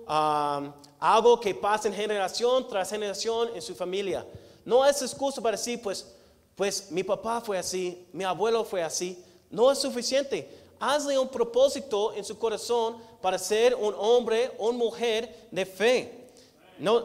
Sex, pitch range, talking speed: male, 170-235 Hz, 155 wpm